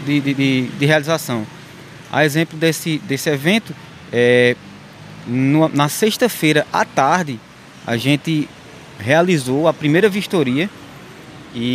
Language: Portuguese